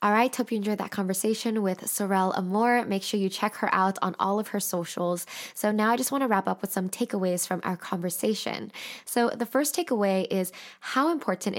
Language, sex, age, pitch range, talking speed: English, female, 10-29, 185-220 Hz, 215 wpm